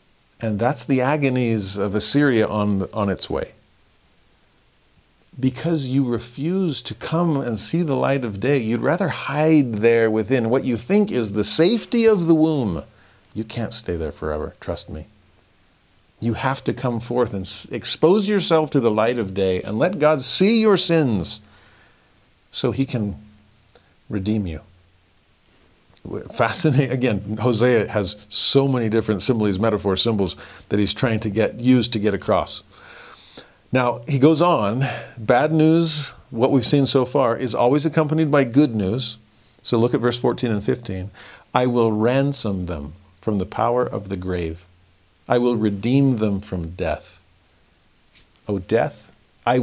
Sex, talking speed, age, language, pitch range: male, 155 wpm, 50-69, English, 100-135 Hz